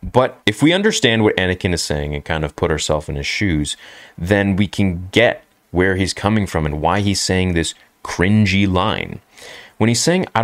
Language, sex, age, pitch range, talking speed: English, male, 30-49, 80-105 Hz, 200 wpm